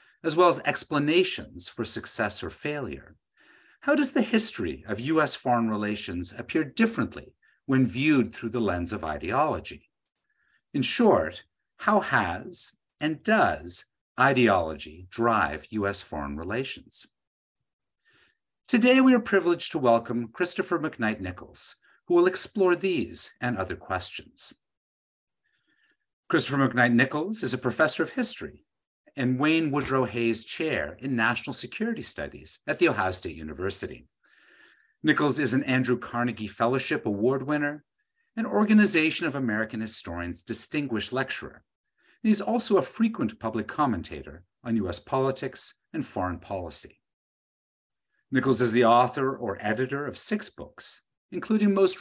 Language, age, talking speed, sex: English, 50-69, 130 wpm, male